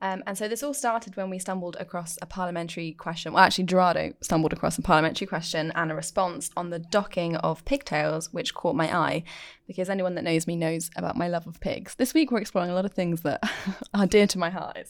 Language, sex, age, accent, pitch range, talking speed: English, female, 10-29, British, 165-210 Hz, 240 wpm